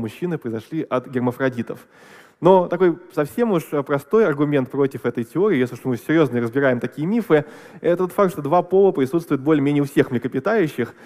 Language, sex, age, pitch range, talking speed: Russian, male, 20-39, 125-160 Hz, 170 wpm